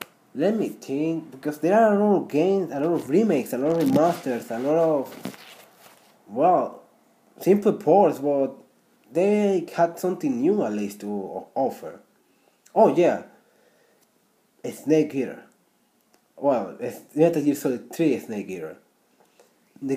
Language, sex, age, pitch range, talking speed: Spanish, male, 30-49, 145-190 Hz, 145 wpm